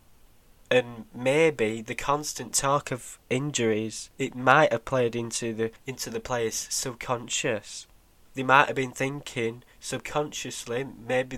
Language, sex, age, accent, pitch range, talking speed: English, male, 10-29, British, 115-135 Hz, 120 wpm